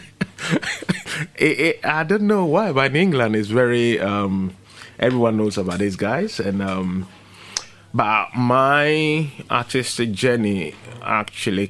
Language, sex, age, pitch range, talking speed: English, male, 20-39, 100-125 Hz, 115 wpm